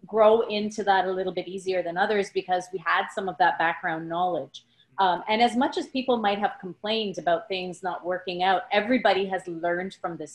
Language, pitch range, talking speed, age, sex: English, 185-220 Hz, 210 wpm, 30-49, female